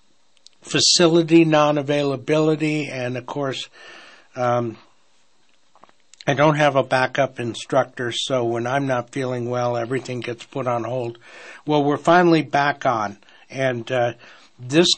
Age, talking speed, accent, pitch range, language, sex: 60-79, 125 wpm, American, 125-155 Hz, English, male